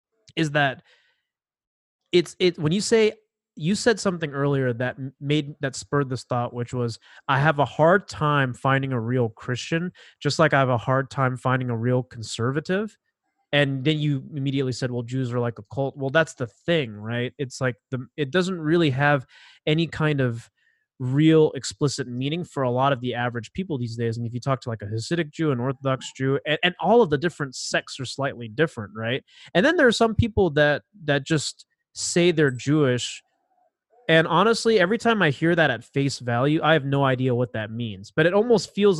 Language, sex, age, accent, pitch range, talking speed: English, male, 20-39, American, 130-175 Hz, 205 wpm